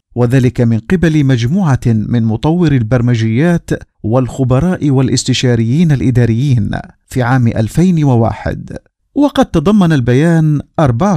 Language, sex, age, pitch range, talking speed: Arabic, male, 50-69, 120-160 Hz, 90 wpm